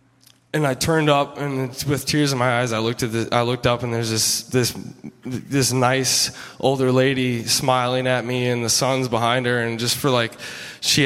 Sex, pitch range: male, 120-140 Hz